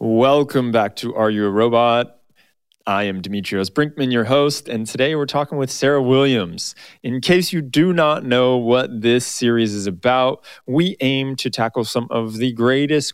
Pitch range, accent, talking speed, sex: 120-155 Hz, American, 180 wpm, male